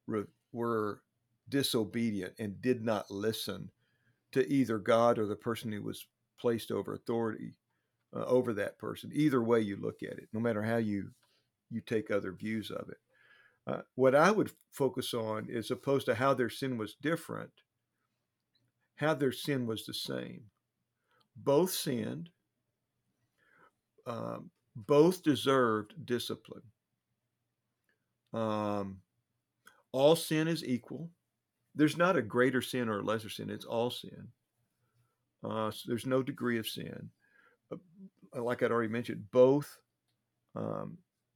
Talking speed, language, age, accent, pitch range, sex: 135 wpm, English, 50-69, American, 110-130 Hz, male